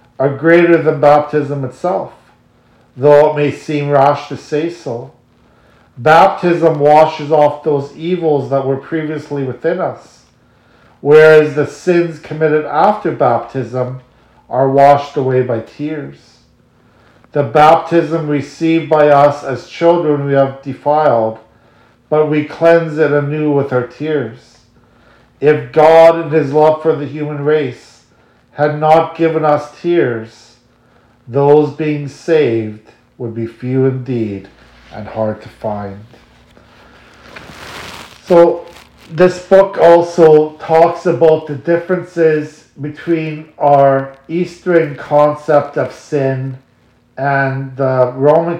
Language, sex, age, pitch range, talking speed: English, male, 50-69, 125-155 Hz, 115 wpm